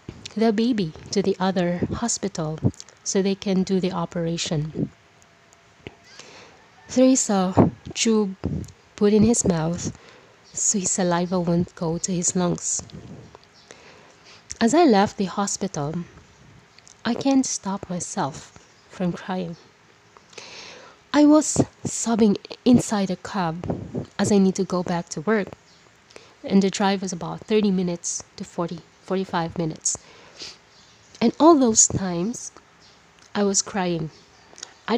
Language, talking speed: English, 125 wpm